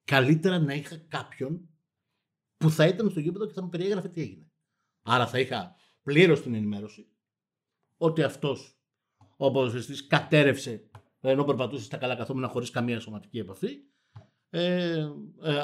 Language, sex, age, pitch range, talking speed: Greek, male, 50-69, 130-180 Hz, 140 wpm